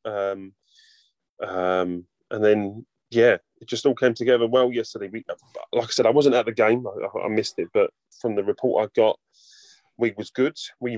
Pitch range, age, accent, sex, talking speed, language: 100-125 Hz, 20-39, British, male, 185 wpm, English